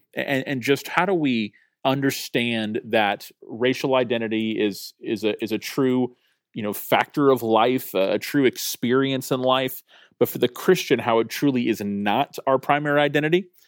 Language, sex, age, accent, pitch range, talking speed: English, male, 30-49, American, 110-130 Hz, 170 wpm